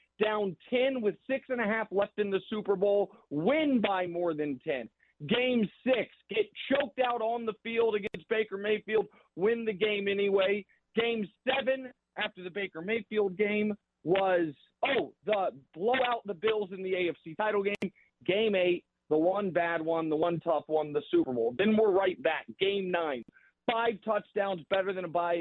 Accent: American